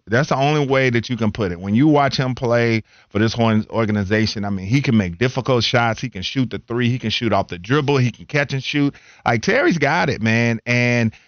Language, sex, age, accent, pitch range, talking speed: English, male, 40-59, American, 105-125 Hz, 245 wpm